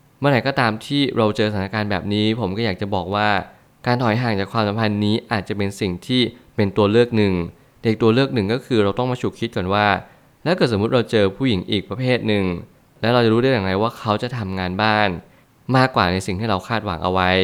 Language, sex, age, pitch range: Thai, male, 20-39, 100-120 Hz